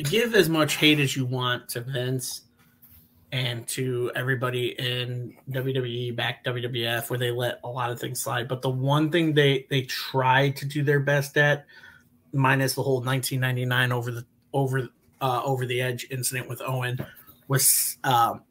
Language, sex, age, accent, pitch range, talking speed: English, male, 30-49, American, 120-140 Hz, 170 wpm